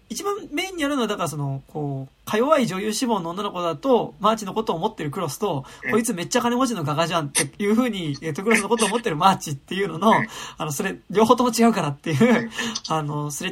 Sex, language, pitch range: male, Japanese, 145-235 Hz